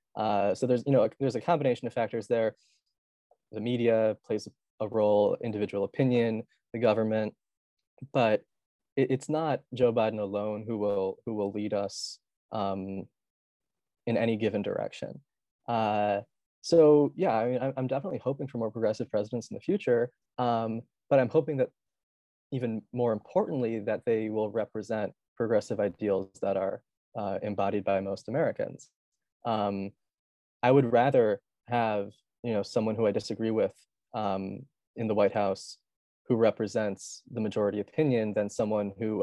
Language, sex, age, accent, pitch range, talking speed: English, male, 20-39, American, 105-125 Hz, 150 wpm